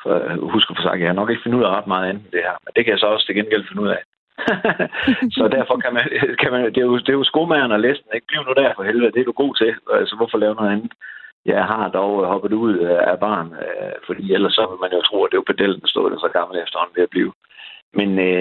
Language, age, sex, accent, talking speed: Danish, 60-79, male, native, 285 wpm